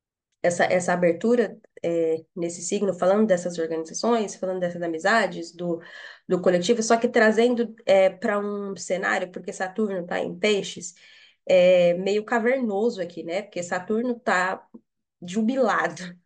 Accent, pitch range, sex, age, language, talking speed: Brazilian, 180-225 Hz, female, 20-39, Portuguese, 135 wpm